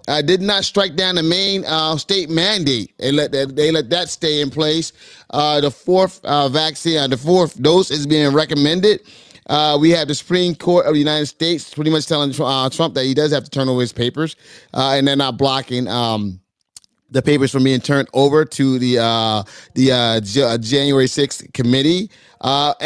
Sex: male